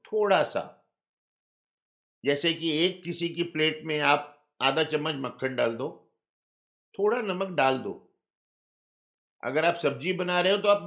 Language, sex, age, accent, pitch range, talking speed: Hindi, male, 50-69, native, 145-185 Hz, 150 wpm